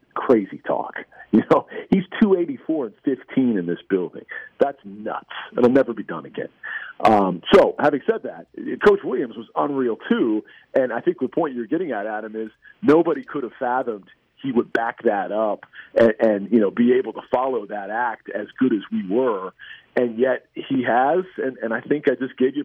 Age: 40-59